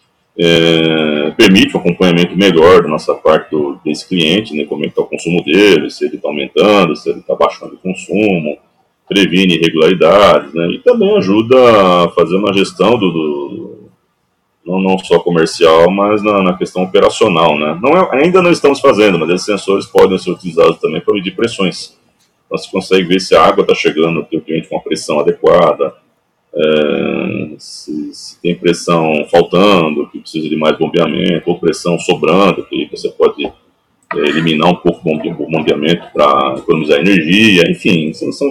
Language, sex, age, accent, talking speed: Portuguese, male, 40-59, Brazilian, 175 wpm